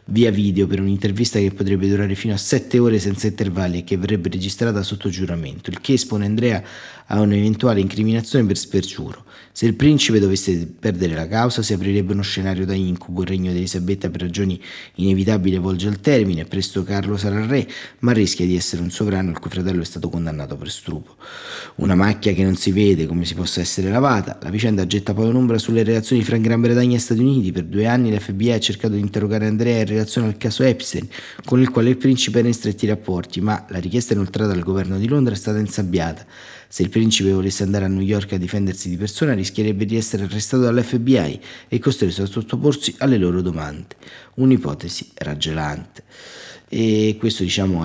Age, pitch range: 30-49, 95-115 Hz